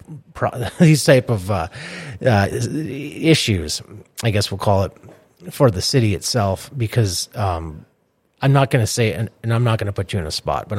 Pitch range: 95-125 Hz